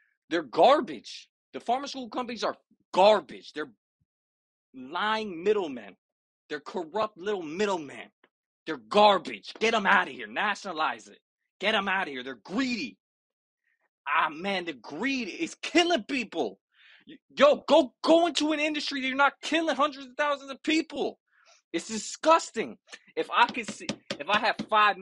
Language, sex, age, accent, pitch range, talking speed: English, male, 20-39, American, 185-260 Hz, 150 wpm